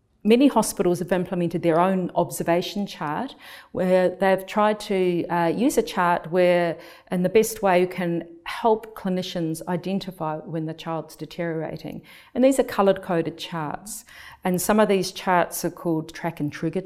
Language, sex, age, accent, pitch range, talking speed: English, female, 50-69, Australian, 165-190 Hz, 165 wpm